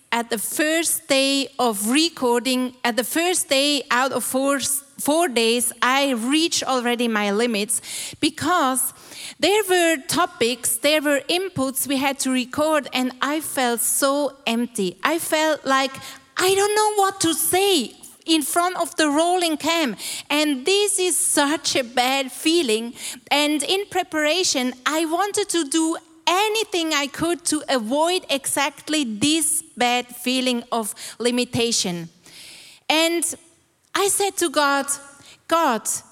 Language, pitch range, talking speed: English, 245-330 Hz, 135 wpm